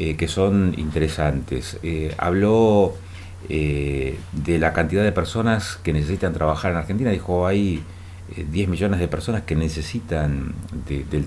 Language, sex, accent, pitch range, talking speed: Spanish, male, Argentinian, 80-95 Hz, 140 wpm